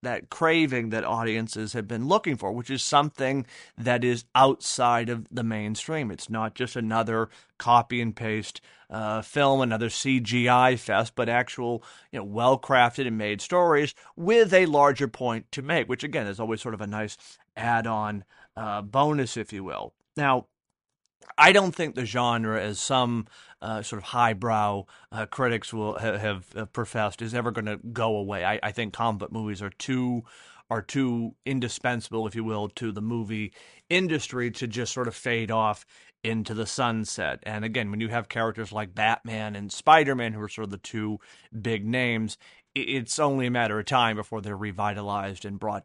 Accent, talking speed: American, 175 wpm